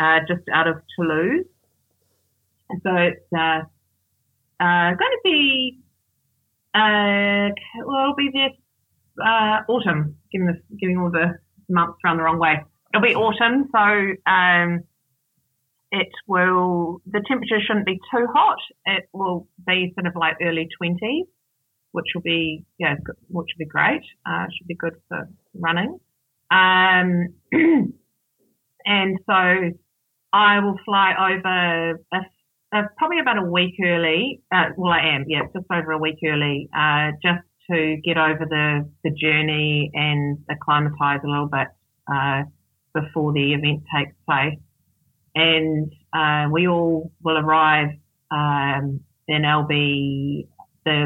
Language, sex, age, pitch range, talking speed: English, female, 30-49, 150-185 Hz, 140 wpm